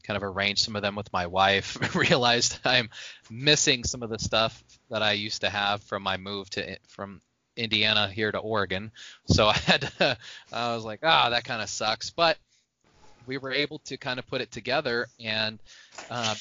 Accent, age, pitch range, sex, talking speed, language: American, 20-39, 105-130 Hz, male, 200 wpm, English